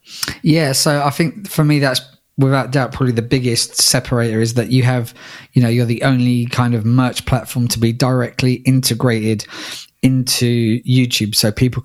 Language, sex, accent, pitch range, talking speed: English, male, British, 115-135 Hz, 170 wpm